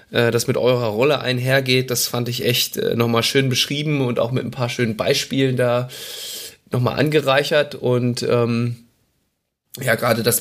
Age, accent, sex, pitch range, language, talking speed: 20-39, German, male, 115-135 Hz, German, 155 wpm